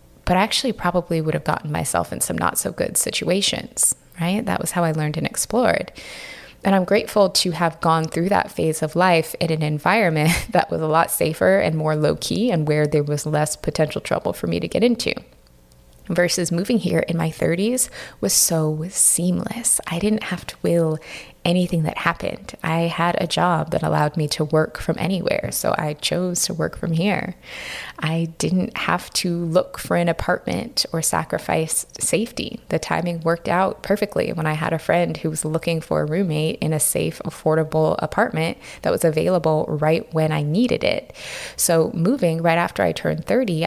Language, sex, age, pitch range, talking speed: English, female, 20-39, 155-185 Hz, 190 wpm